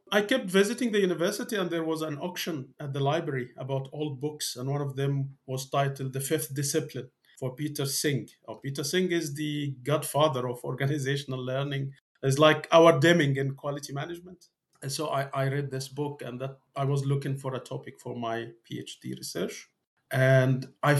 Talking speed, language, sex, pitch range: 185 wpm, English, male, 125-145 Hz